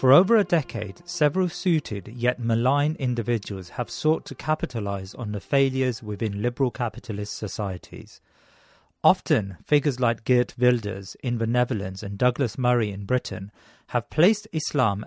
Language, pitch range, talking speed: English, 110-140 Hz, 145 wpm